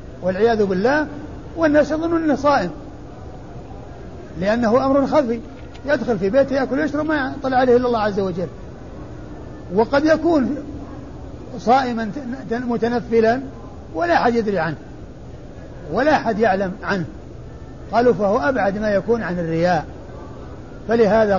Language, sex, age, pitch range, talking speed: Arabic, male, 50-69, 205-265 Hz, 115 wpm